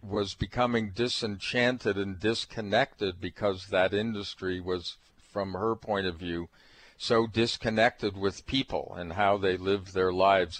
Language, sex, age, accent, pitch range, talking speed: English, male, 50-69, American, 95-110 Hz, 135 wpm